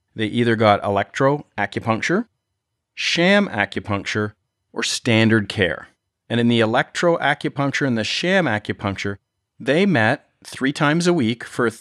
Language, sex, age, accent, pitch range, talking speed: English, male, 40-59, American, 105-125 Hz, 120 wpm